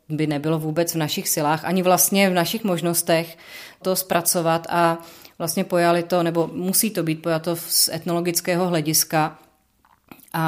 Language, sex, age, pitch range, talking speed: Czech, female, 30-49, 155-175 Hz, 150 wpm